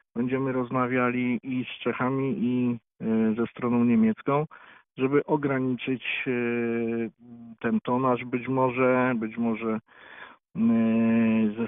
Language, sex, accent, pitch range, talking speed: Polish, male, native, 115-135 Hz, 90 wpm